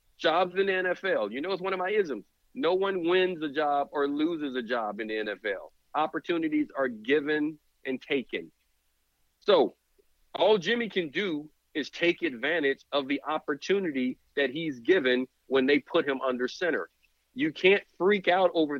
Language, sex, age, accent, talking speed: English, male, 50-69, American, 170 wpm